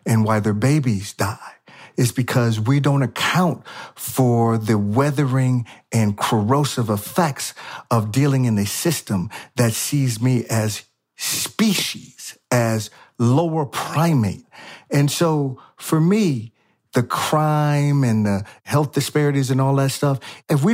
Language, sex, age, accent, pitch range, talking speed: English, male, 40-59, American, 115-150 Hz, 130 wpm